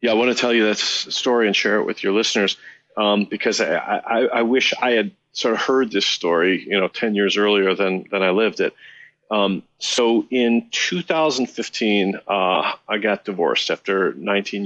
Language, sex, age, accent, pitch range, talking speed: English, male, 40-59, American, 100-125 Hz, 190 wpm